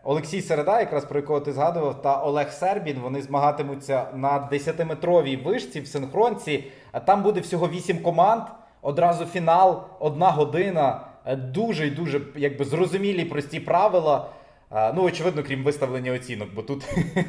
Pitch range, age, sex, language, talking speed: 140-180 Hz, 20-39, male, Ukrainian, 130 wpm